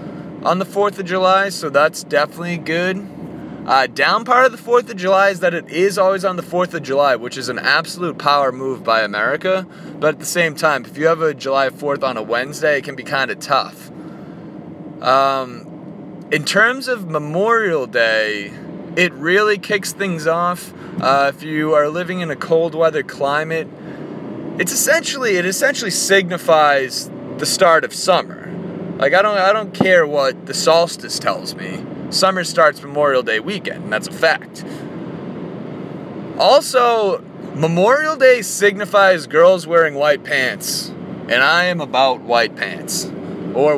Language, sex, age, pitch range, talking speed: English, male, 20-39, 145-195 Hz, 160 wpm